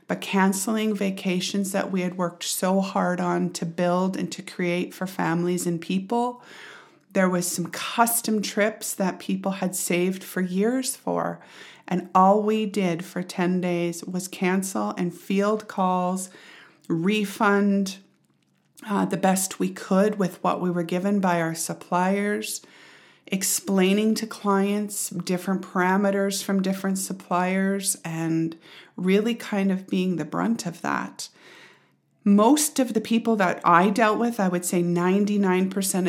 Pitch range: 175-200 Hz